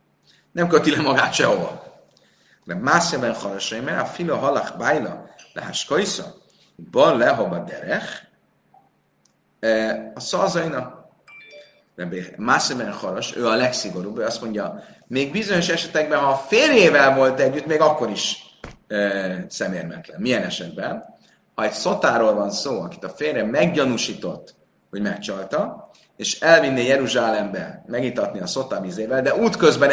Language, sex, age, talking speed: Hungarian, male, 30-49, 120 wpm